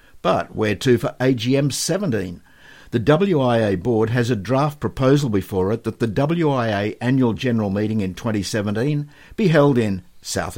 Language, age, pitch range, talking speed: English, 60-79, 100-135 Hz, 155 wpm